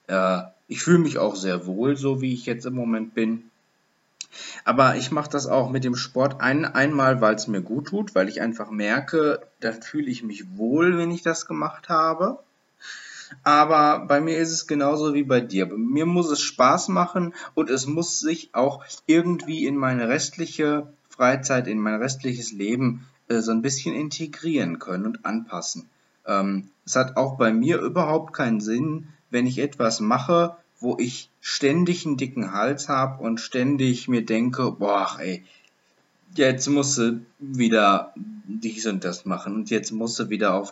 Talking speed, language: 170 wpm, German